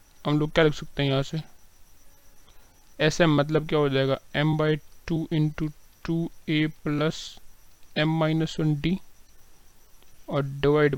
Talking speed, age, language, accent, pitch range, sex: 140 wpm, 30-49, Hindi, native, 140-165 Hz, male